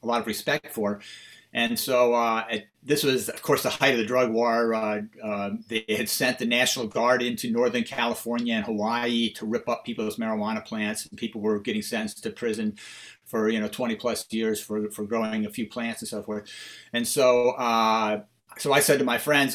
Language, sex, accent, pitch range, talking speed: English, male, American, 115-150 Hz, 210 wpm